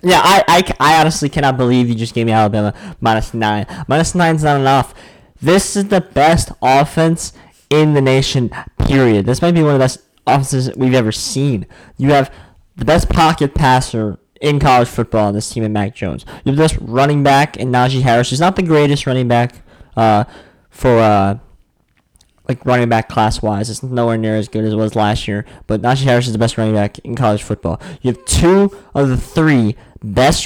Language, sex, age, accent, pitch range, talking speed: English, male, 10-29, American, 110-145 Hz, 205 wpm